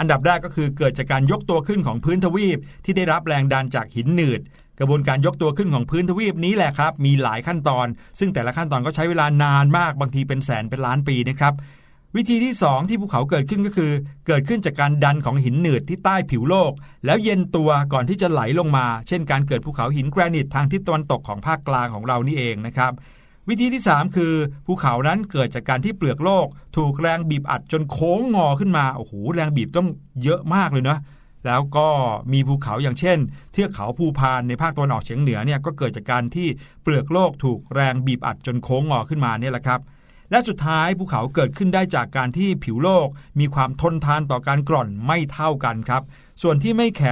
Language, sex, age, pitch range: Thai, male, 60-79, 130-170 Hz